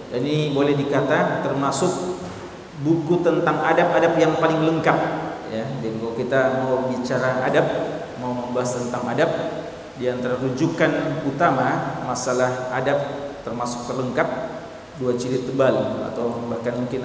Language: Indonesian